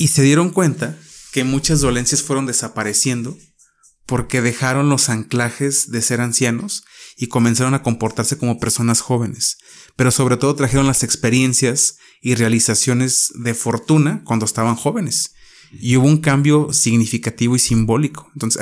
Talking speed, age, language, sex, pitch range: 140 wpm, 30-49, Spanish, male, 115-135 Hz